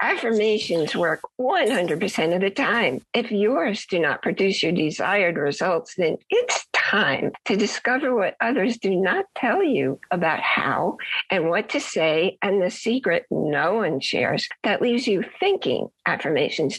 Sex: female